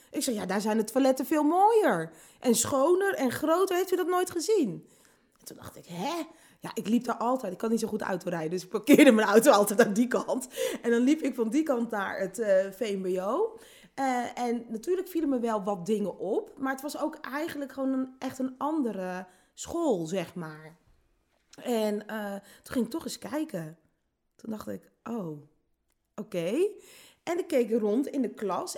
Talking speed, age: 200 wpm, 20-39